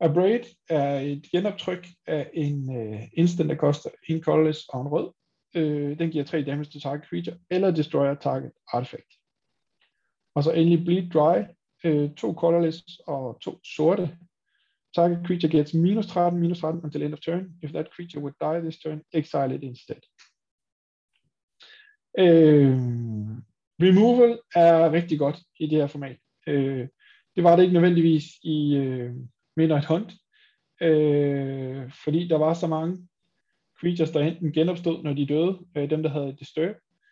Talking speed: 160 wpm